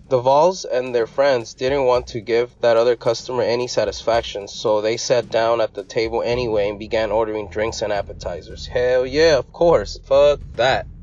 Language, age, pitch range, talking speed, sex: English, 20-39, 115-190 Hz, 185 wpm, male